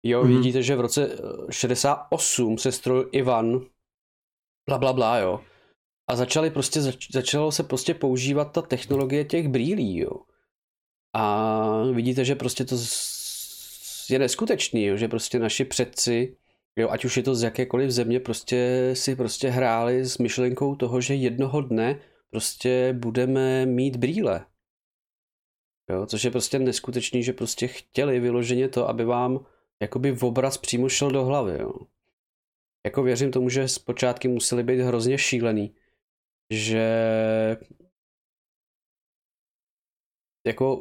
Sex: male